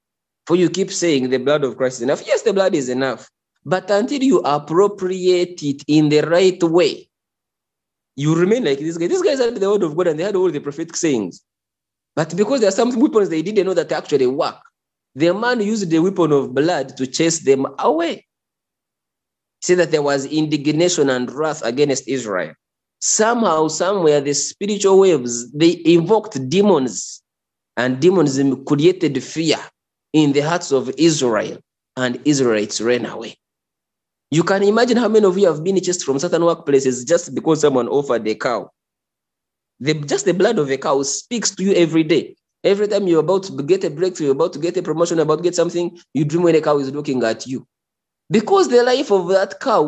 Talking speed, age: 190 wpm, 30-49